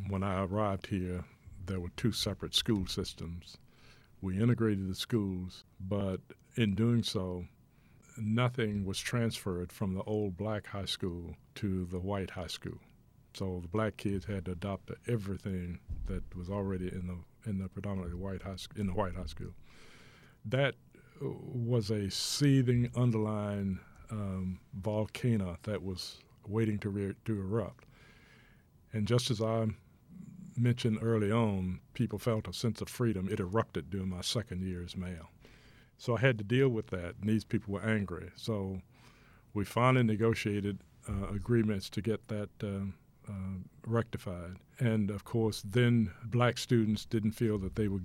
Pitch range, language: 95-115 Hz, English